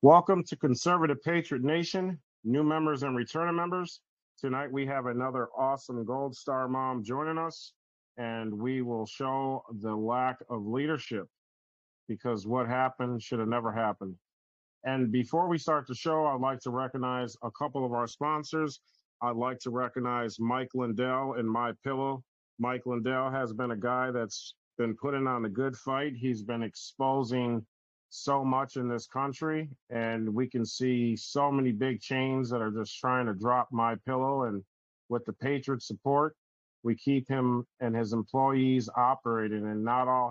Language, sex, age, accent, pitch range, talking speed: English, male, 40-59, American, 120-135 Hz, 165 wpm